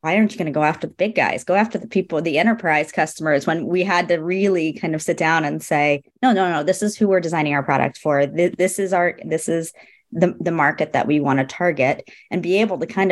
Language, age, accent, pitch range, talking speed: English, 30-49, American, 140-180 Hz, 265 wpm